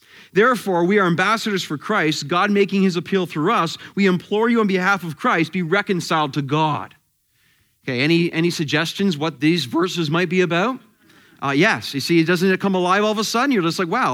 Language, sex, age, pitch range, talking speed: English, male, 30-49, 165-215 Hz, 210 wpm